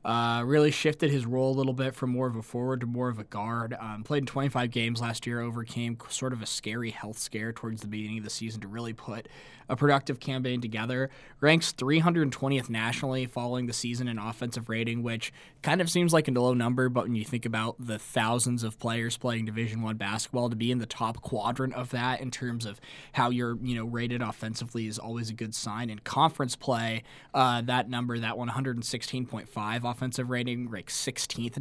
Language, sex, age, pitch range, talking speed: English, male, 20-39, 115-130 Hz, 205 wpm